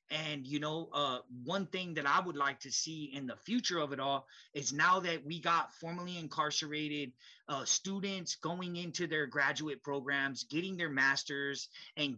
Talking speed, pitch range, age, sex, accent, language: 175 wpm, 140-175 Hz, 30-49, male, American, English